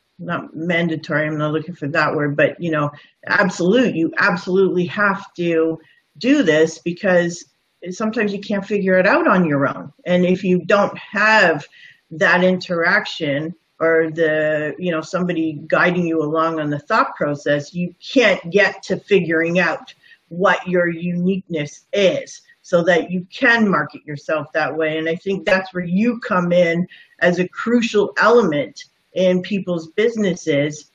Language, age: English, 40-59